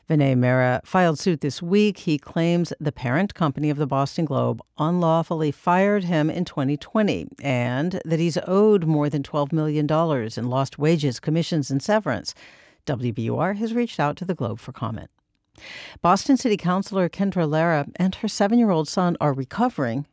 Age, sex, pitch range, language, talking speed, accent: 60-79, female, 145-195 Hz, English, 160 wpm, American